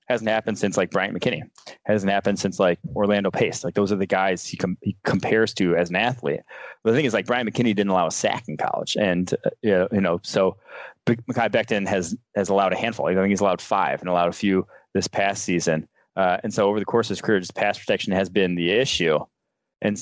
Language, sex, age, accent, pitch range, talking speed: English, male, 20-39, American, 95-115 Hz, 230 wpm